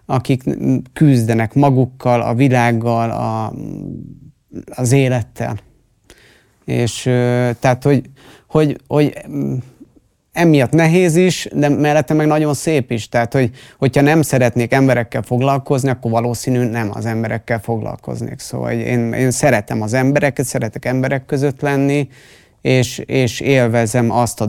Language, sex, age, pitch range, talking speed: Hungarian, male, 30-49, 115-135 Hz, 125 wpm